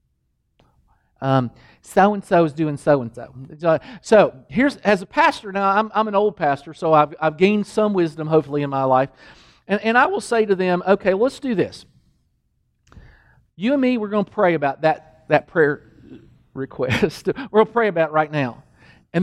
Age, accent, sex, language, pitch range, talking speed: 40-59, American, male, English, 155-215 Hz, 185 wpm